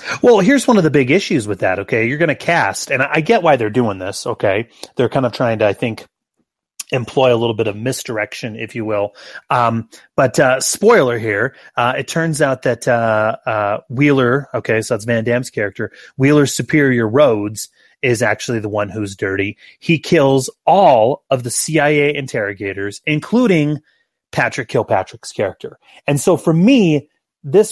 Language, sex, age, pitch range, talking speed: English, male, 30-49, 115-155 Hz, 180 wpm